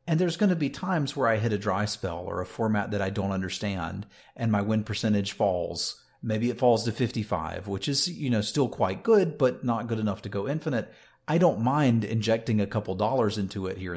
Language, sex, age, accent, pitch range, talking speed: English, male, 40-59, American, 100-125 Hz, 230 wpm